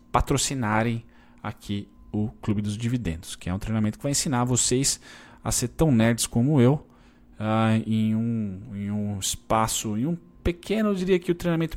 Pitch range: 95-120 Hz